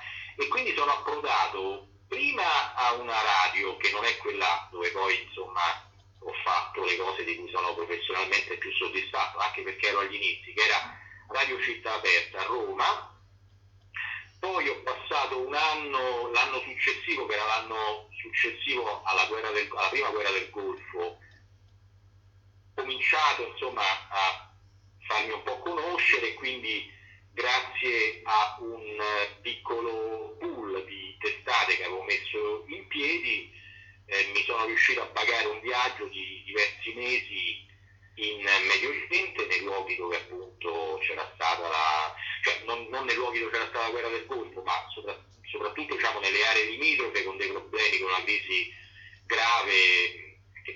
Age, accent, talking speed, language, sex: 40-59, native, 150 wpm, Italian, male